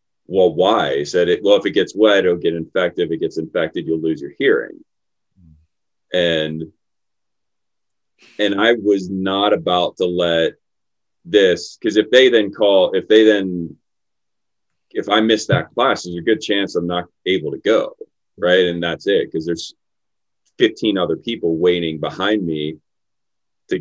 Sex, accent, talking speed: male, American, 165 wpm